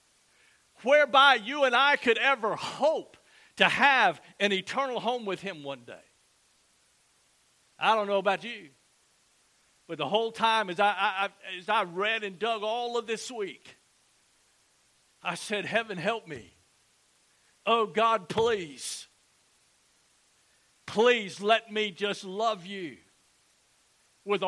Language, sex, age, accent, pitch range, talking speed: English, male, 50-69, American, 195-235 Hz, 125 wpm